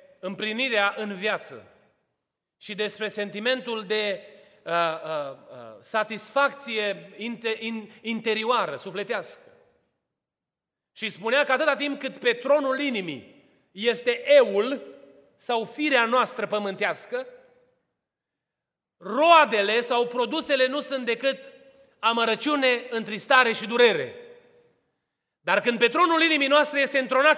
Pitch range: 230-295 Hz